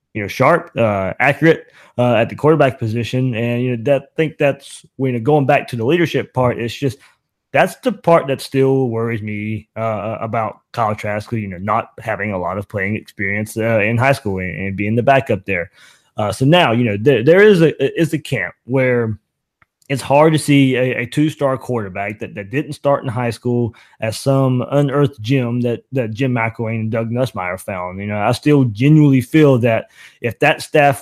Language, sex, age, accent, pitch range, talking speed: English, male, 20-39, American, 115-140 Hz, 205 wpm